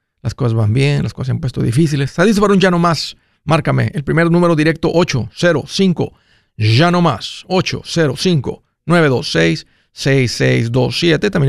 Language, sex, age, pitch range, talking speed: Spanish, male, 50-69, 130-175 Hz, 125 wpm